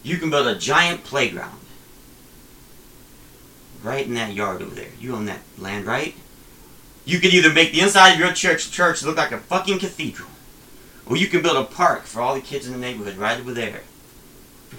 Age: 40-59